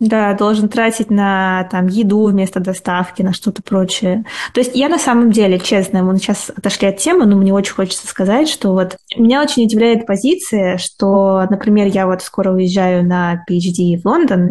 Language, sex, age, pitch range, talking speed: Russian, female, 20-39, 185-220 Hz, 180 wpm